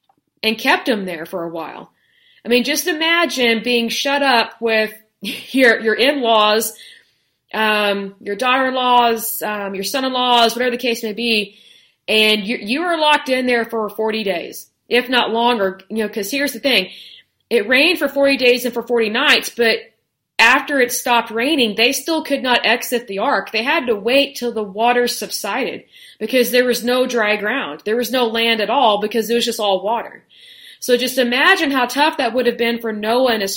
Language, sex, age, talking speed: English, female, 30-49, 195 wpm